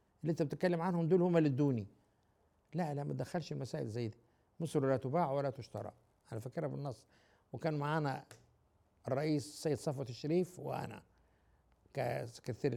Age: 60-79